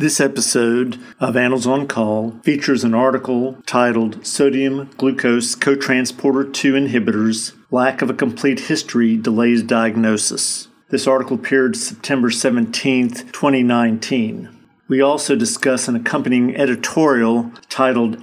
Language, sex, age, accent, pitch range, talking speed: English, male, 50-69, American, 115-135 Hz, 115 wpm